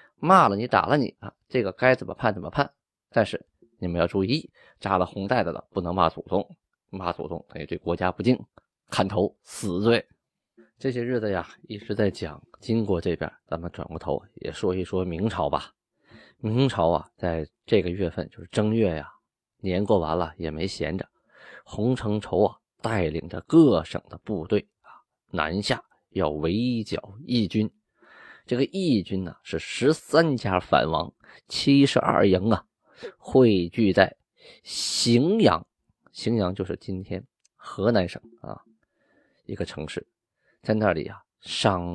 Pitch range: 85-115 Hz